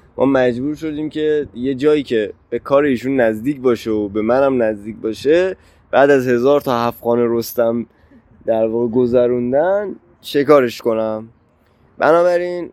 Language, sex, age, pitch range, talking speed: Persian, male, 20-39, 120-160 Hz, 130 wpm